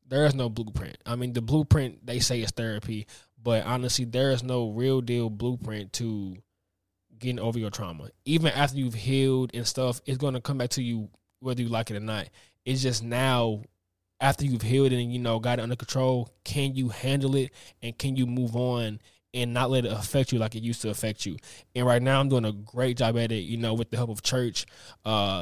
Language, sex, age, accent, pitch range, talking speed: English, male, 20-39, American, 110-135 Hz, 225 wpm